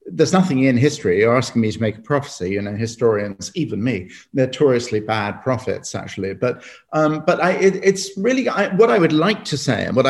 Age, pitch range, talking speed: 50-69, 120-145 Hz, 220 wpm